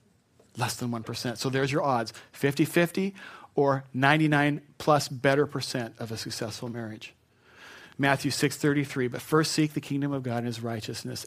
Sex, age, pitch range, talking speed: male, 40-59, 120-155 Hz, 155 wpm